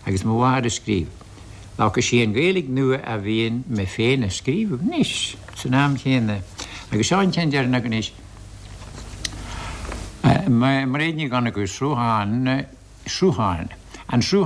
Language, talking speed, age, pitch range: English, 60 wpm, 60-79, 100-140 Hz